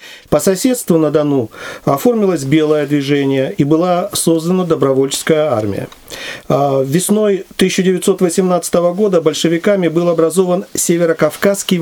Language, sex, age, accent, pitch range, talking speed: Russian, male, 50-69, native, 140-180 Hz, 95 wpm